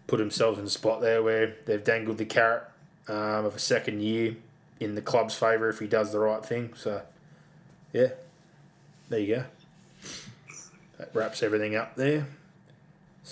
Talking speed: 160 wpm